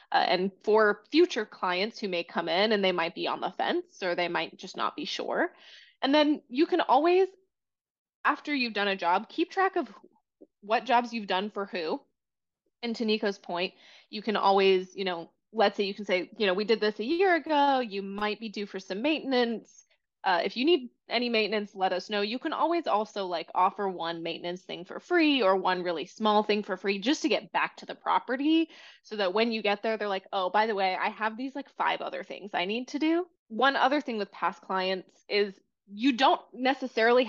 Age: 20-39